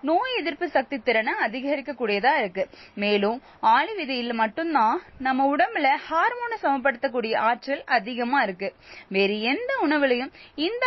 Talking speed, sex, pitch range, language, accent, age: 120 wpm, female, 235-315 Hz, Tamil, native, 20-39